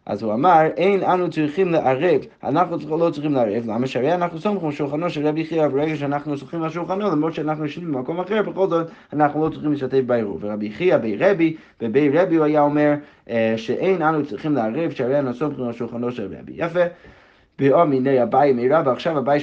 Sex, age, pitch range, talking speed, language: male, 20-39, 130-165 Hz, 105 wpm, Hebrew